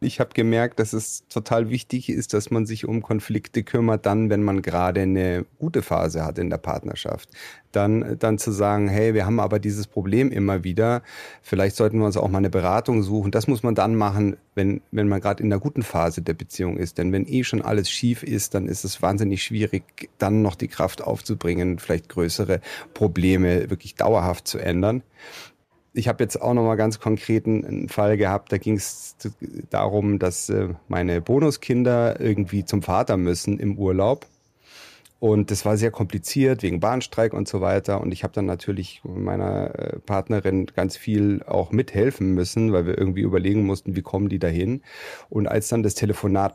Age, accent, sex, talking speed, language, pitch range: 40-59, German, male, 185 wpm, German, 95-110 Hz